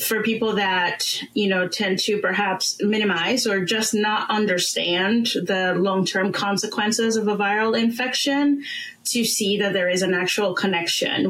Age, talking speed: 30-49, 155 wpm